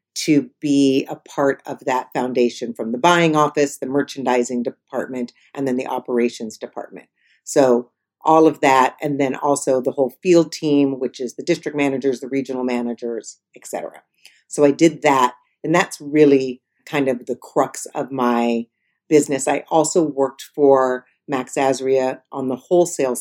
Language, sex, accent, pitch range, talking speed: English, female, American, 130-150 Hz, 165 wpm